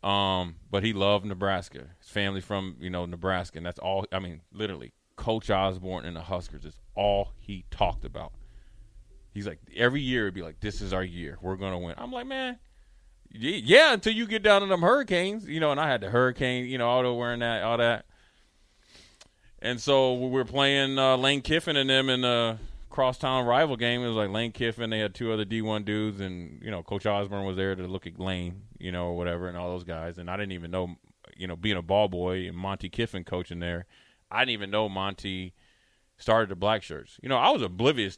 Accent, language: American, English